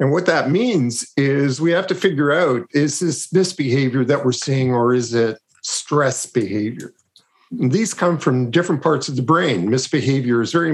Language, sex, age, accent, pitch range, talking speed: English, male, 50-69, American, 135-175 Hz, 185 wpm